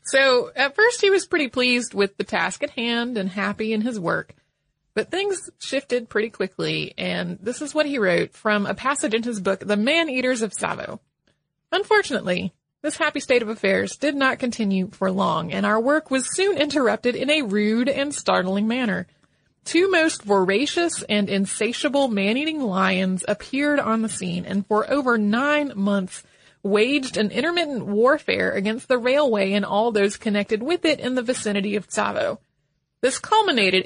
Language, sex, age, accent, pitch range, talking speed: English, female, 30-49, American, 200-275 Hz, 170 wpm